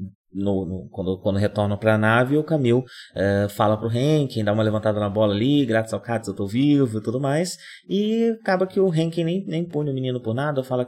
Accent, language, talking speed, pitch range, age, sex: Brazilian, Portuguese, 230 wpm, 100-135 Hz, 20-39, male